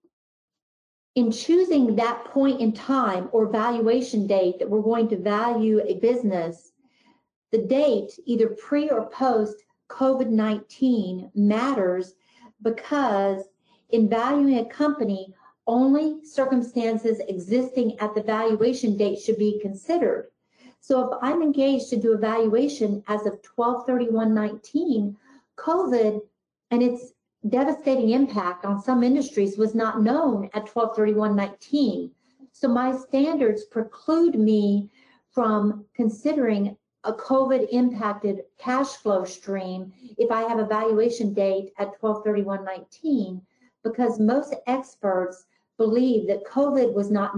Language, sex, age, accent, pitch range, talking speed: English, female, 50-69, American, 205-255 Hz, 120 wpm